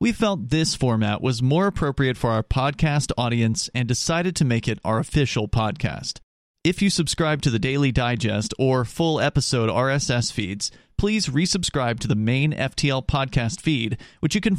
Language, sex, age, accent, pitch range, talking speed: English, male, 40-59, American, 120-165 Hz, 175 wpm